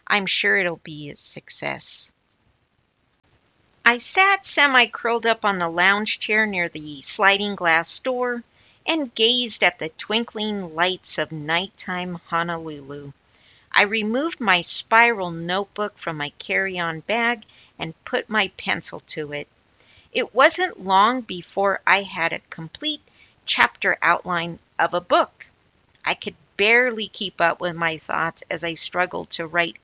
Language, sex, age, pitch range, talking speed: English, female, 50-69, 170-235 Hz, 145 wpm